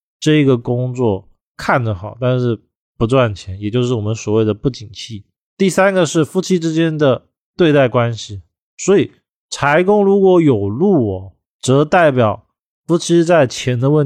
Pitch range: 110-145 Hz